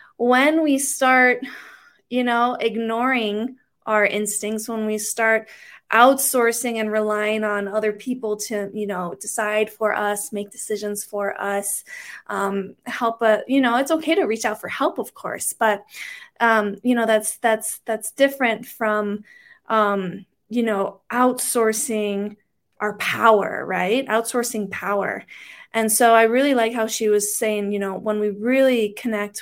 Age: 20-39